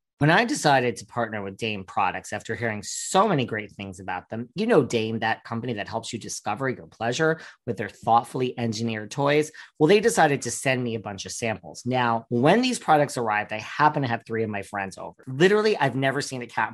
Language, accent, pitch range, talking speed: English, American, 115-160 Hz, 220 wpm